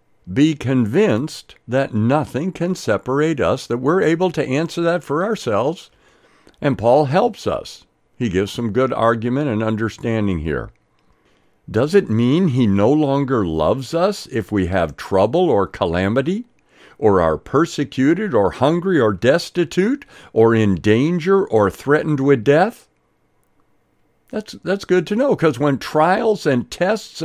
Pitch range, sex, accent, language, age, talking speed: 110-170 Hz, male, American, English, 60-79, 145 wpm